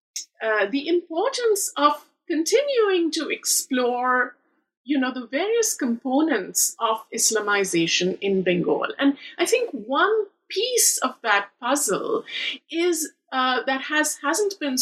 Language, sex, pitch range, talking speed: English, female, 220-335 Hz, 120 wpm